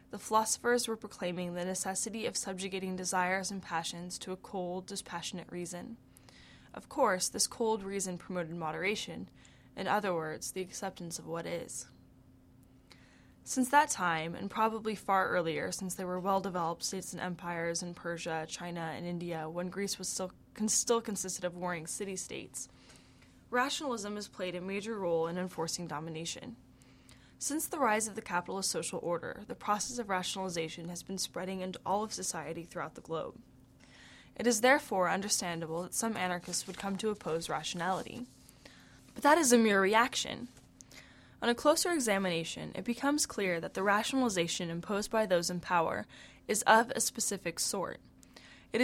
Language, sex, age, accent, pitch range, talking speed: English, female, 10-29, American, 175-220 Hz, 160 wpm